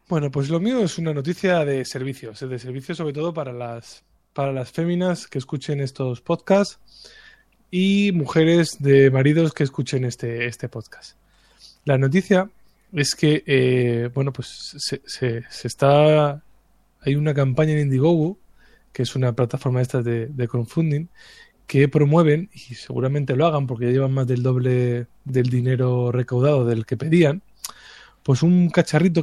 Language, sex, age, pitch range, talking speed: Spanish, male, 20-39, 125-155 Hz, 155 wpm